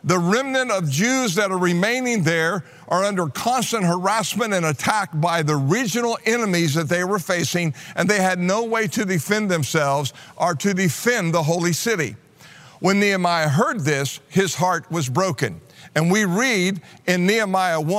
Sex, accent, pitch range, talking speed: male, American, 160-210 Hz, 165 wpm